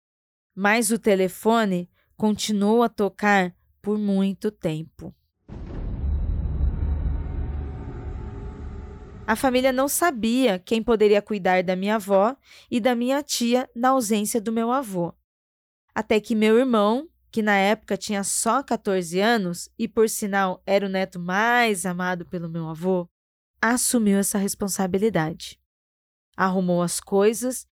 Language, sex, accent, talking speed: Portuguese, female, Brazilian, 120 wpm